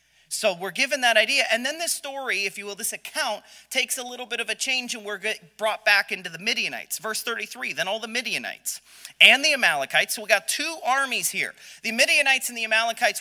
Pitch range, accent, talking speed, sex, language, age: 185-245 Hz, American, 220 wpm, male, English, 30-49